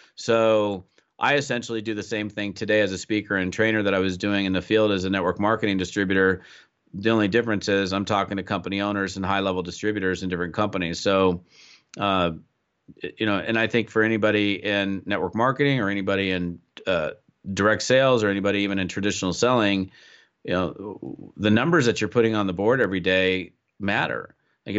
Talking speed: 190 wpm